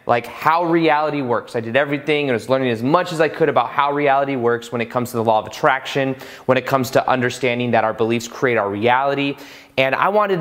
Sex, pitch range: male, 135-165 Hz